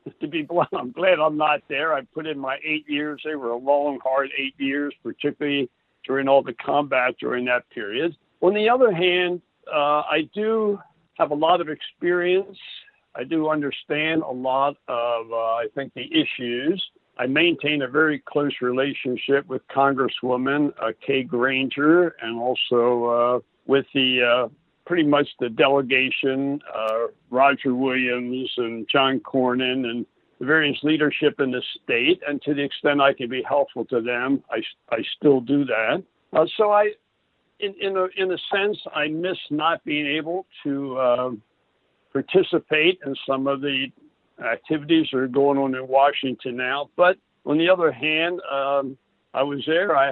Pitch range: 130-160 Hz